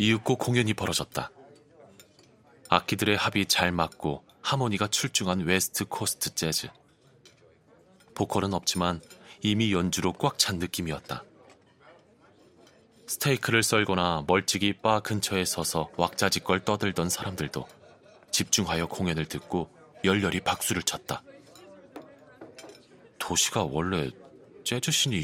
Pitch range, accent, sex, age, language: 90-110 Hz, native, male, 30-49, Korean